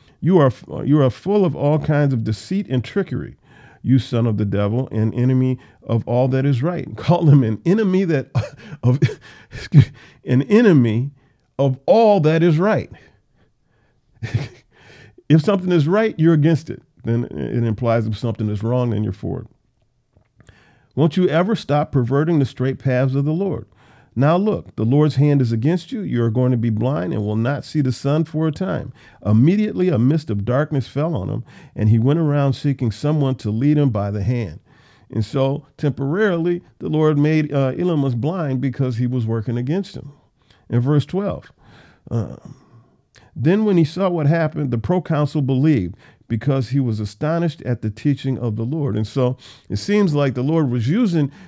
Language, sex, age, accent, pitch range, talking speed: English, male, 50-69, American, 120-155 Hz, 180 wpm